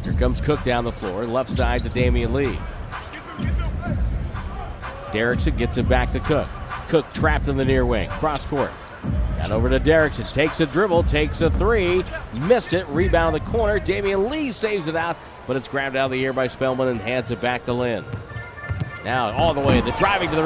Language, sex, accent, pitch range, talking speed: English, male, American, 120-155 Hz, 200 wpm